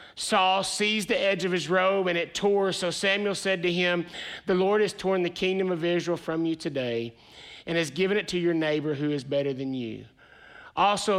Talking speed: 210 wpm